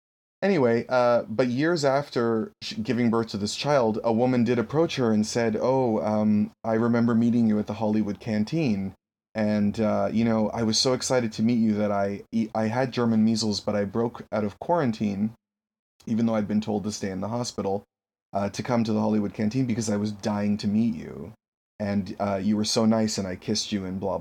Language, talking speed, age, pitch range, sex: English, 215 wpm, 30-49, 100-115 Hz, male